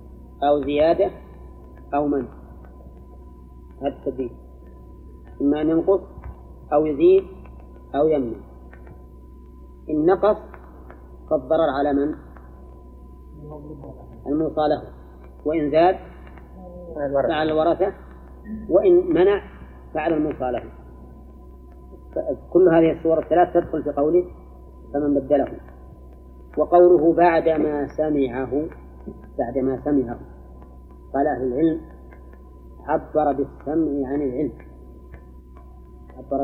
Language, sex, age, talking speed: Arabic, female, 30-49, 75 wpm